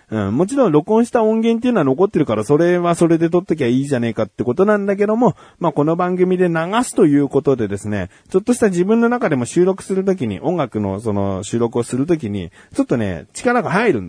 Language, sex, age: Japanese, male, 40-59